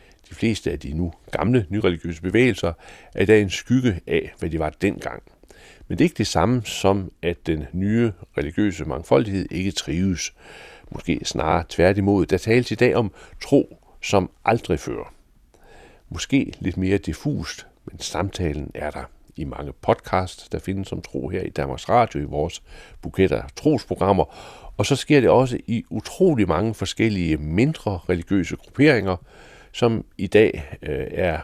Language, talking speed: Danish, 160 wpm